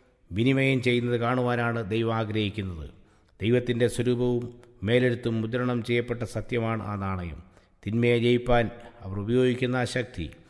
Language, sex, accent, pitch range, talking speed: English, male, Indian, 105-125 Hz, 150 wpm